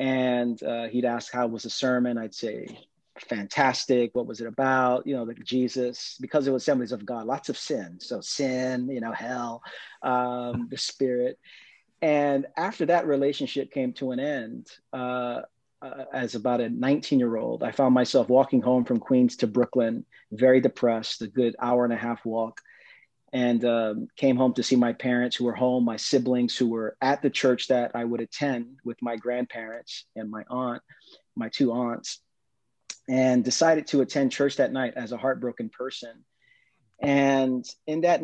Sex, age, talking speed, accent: male, 40-59, 175 wpm, American